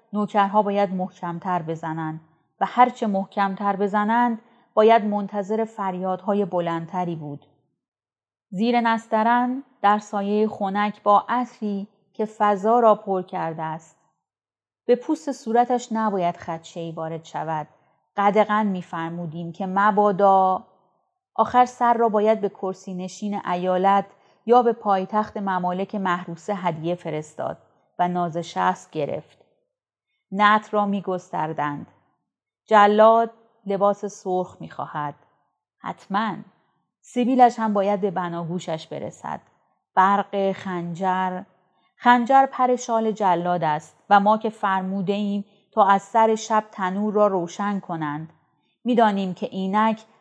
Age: 30-49